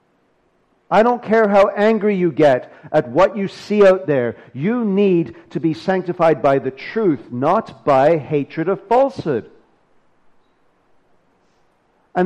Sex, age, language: male, 50-69, English